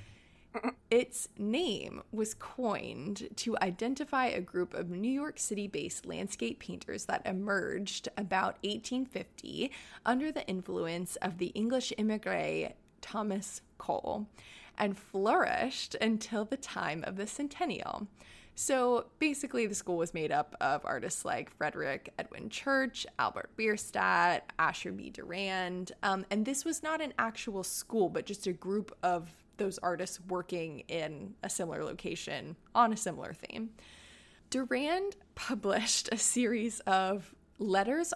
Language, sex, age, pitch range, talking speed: English, female, 20-39, 190-250 Hz, 130 wpm